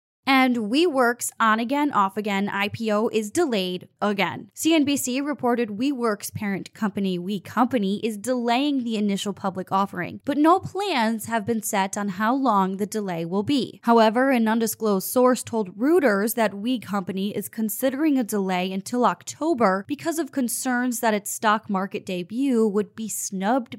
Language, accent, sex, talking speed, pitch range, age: English, American, female, 155 wpm, 200-260 Hz, 10-29